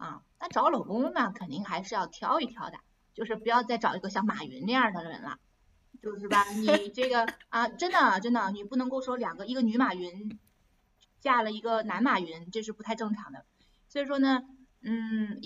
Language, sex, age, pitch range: Chinese, female, 20-39, 195-240 Hz